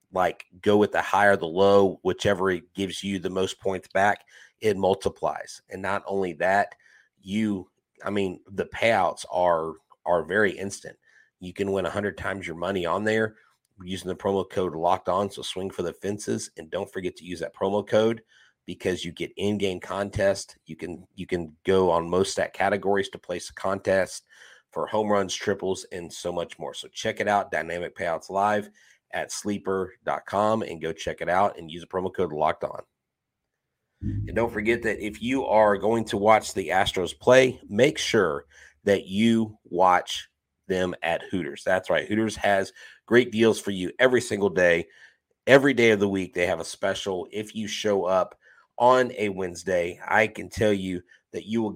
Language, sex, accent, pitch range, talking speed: English, male, American, 90-105 Hz, 185 wpm